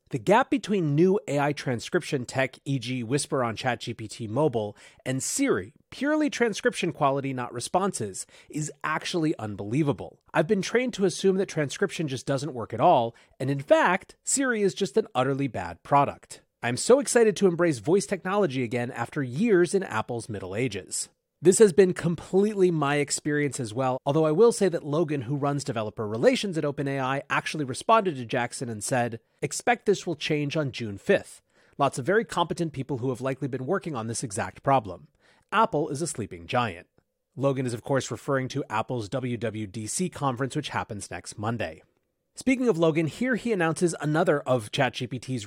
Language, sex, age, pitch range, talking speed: English, male, 30-49, 125-180 Hz, 175 wpm